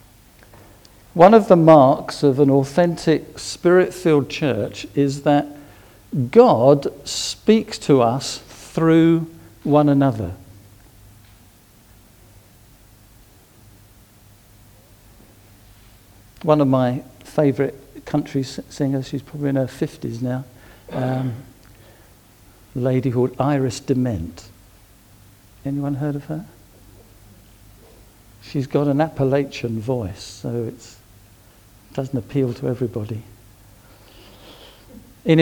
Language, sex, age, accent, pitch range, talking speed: English, male, 60-79, British, 105-145 Hz, 85 wpm